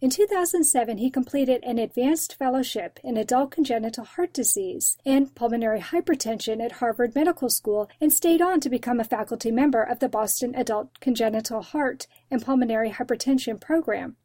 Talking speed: 155 wpm